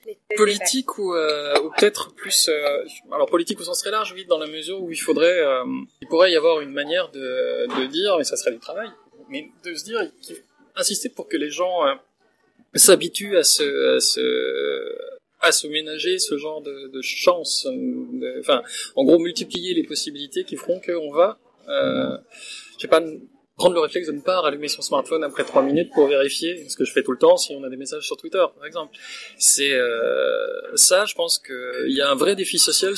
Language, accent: French, French